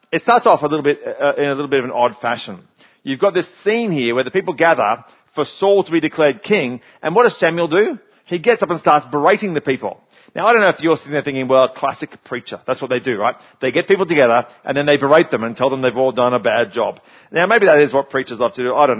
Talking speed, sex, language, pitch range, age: 285 wpm, male, English, 130-160 Hz, 40-59